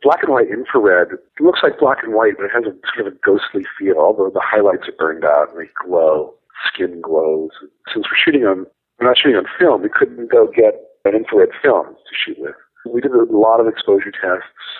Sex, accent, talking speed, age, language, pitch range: male, American, 235 wpm, 50-69, English, 335-465 Hz